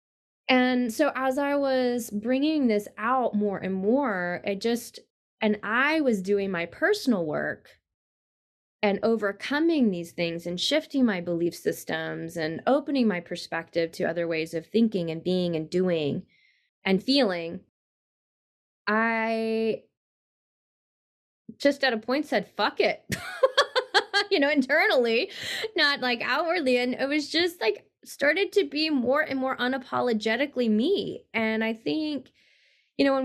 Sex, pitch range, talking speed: female, 200-280 Hz, 140 wpm